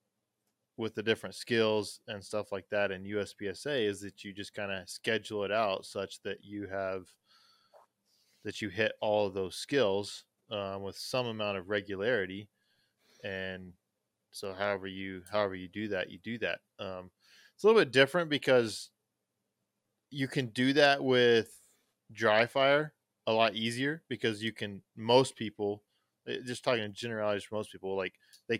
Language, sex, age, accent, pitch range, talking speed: English, male, 20-39, American, 100-115 Hz, 160 wpm